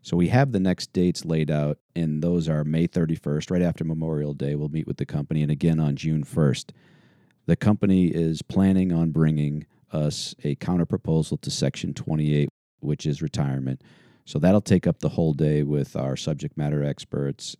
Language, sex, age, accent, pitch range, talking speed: English, male, 40-59, American, 75-85 Hz, 185 wpm